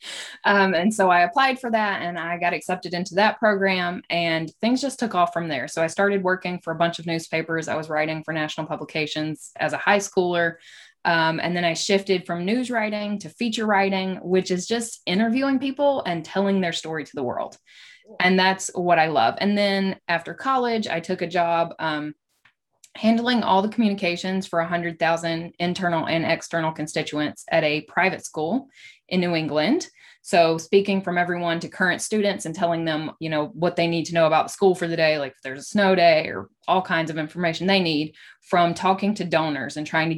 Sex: female